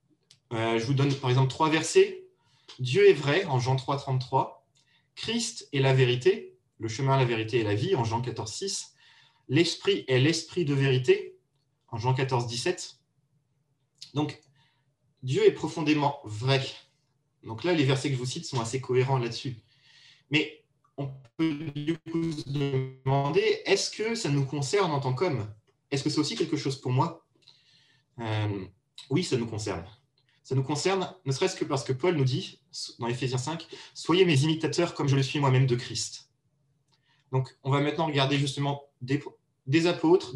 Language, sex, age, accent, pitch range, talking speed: French, male, 30-49, French, 130-155 Hz, 175 wpm